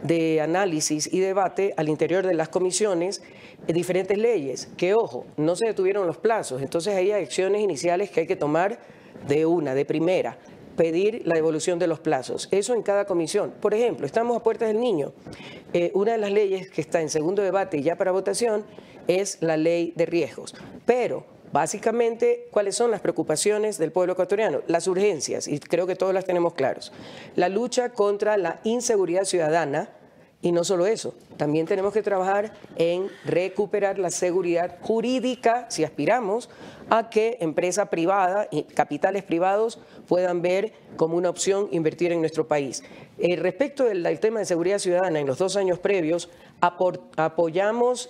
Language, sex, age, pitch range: English, female, 40-59, 170-210 Hz